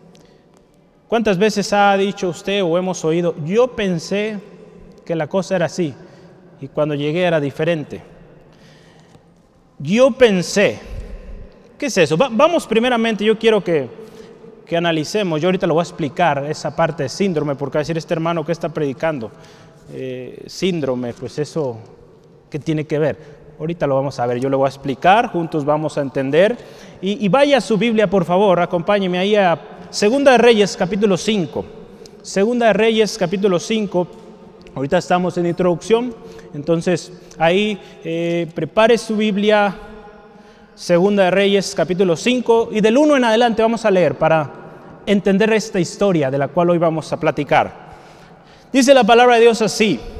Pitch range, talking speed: 165-215 Hz, 160 wpm